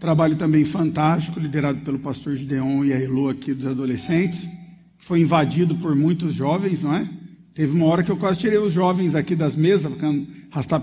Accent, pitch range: Brazilian, 145-185 Hz